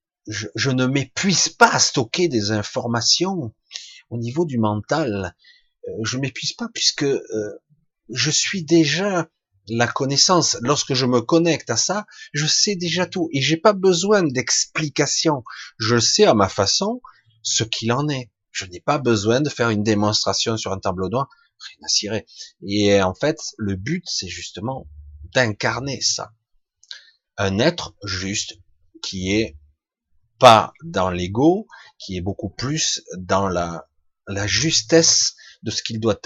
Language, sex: French, male